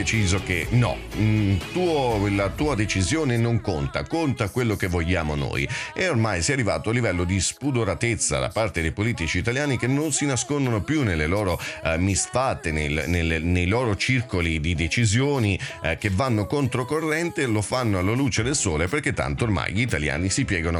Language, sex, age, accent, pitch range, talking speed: Italian, male, 40-59, native, 90-120 Hz, 170 wpm